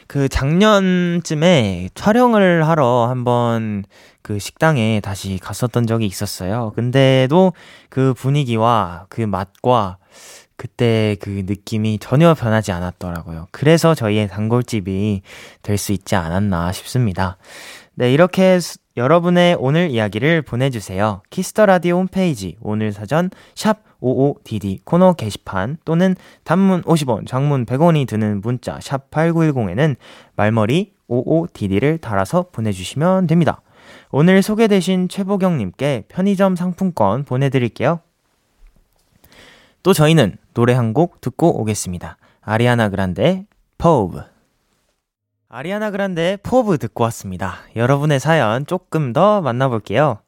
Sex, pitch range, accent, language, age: male, 105-170 Hz, native, Korean, 20-39